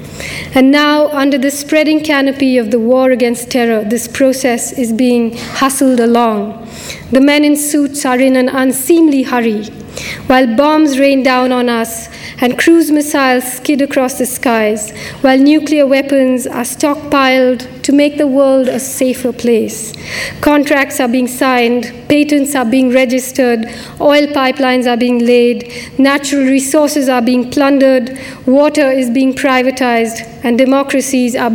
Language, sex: English, female